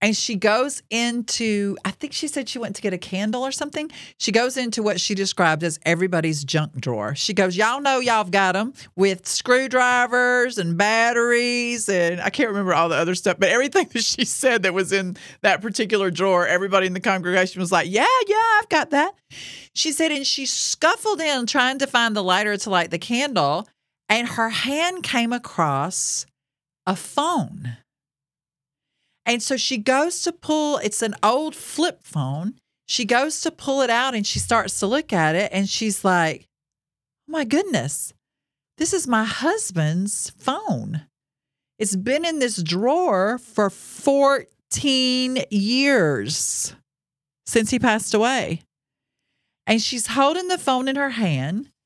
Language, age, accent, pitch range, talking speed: English, 40-59, American, 180-260 Hz, 170 wpm